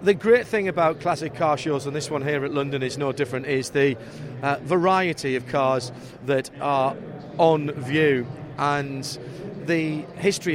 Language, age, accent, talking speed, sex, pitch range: English, 40-59, British, 165 wpm, male, 130-155 Hz